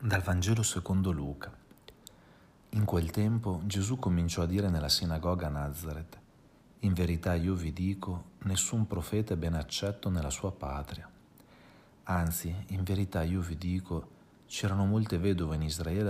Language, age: Italian, 40-59